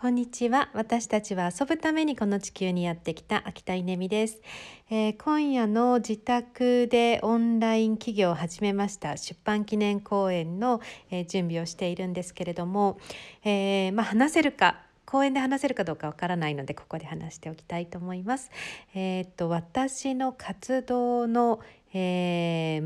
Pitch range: 165-230 Hz